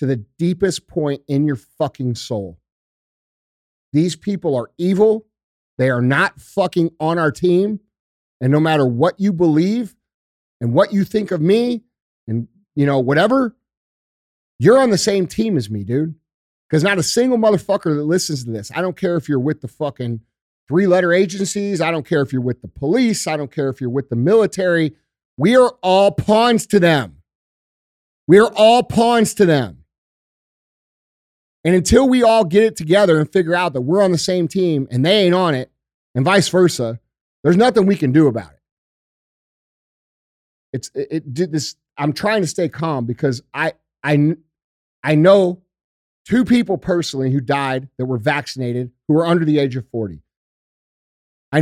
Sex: male